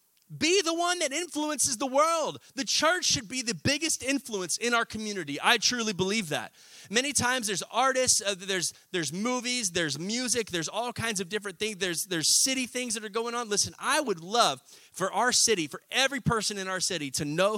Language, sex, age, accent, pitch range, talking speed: English, male, 30-49, American, 170-230 Hz, 205 wpm